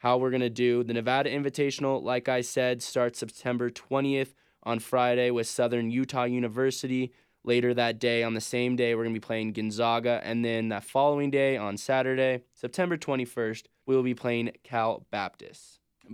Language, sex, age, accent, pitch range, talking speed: English, male, 20-39, American, 115-130 Hz, 180 wpm